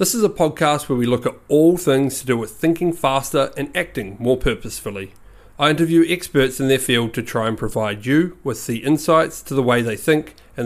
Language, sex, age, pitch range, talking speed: English, male, 30-49, 115-150 Hz, 220 wpm